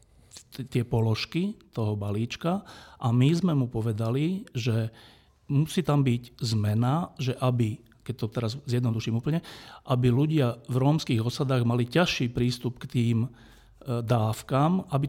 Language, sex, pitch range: Slovak, male, 115-140 Hz